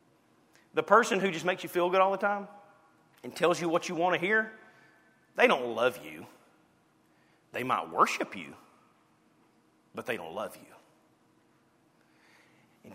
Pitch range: 130-180 Hz